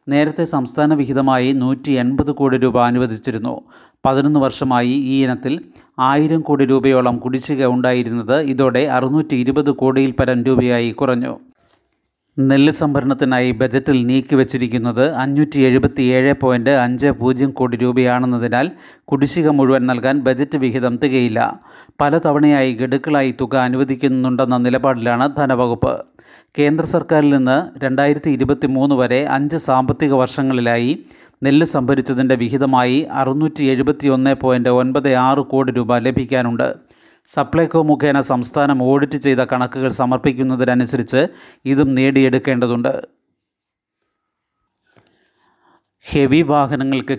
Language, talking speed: Malayalam, 90 wpm